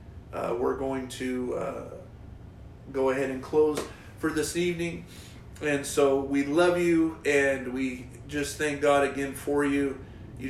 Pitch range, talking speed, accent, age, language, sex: 125-140 Hz, 150 wpm, American, 40-59, English, male